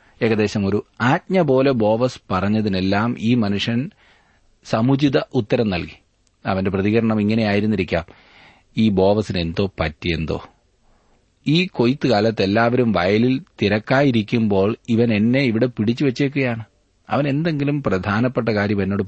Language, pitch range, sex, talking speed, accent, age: Malayalam, 95-120 Hz, male, 95 wpm, native, 30-49